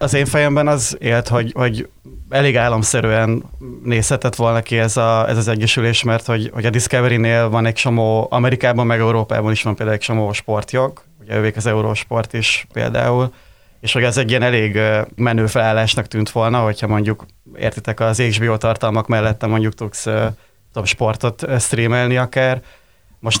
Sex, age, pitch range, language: male, 20-39, 110-120 Hz, Hungarian